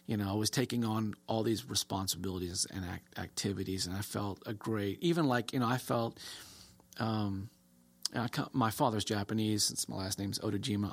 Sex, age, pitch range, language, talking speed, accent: male, 40-59, 100-120 Hz, English, 165 wpm, American